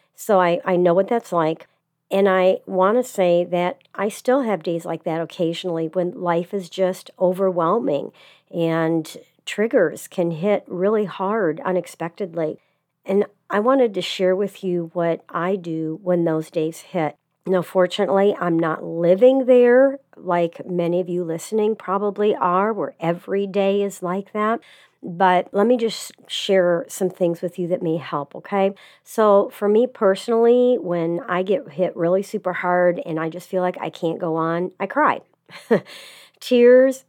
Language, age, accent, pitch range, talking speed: English, 50-69, American, 170-200 Hz, 165 wpm